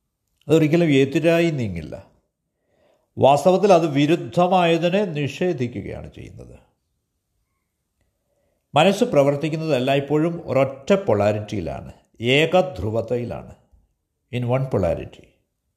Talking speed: 60 wpm